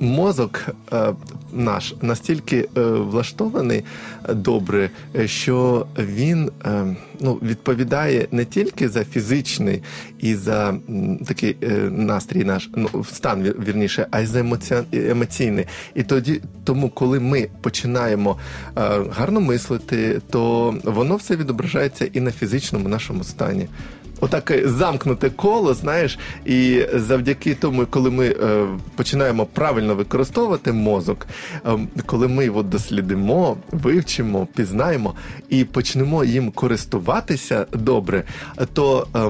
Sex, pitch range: male, 110-135 Hz